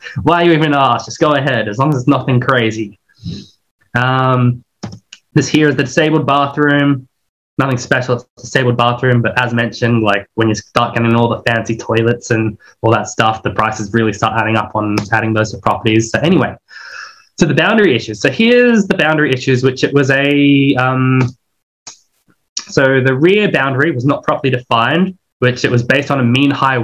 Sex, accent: male, Australian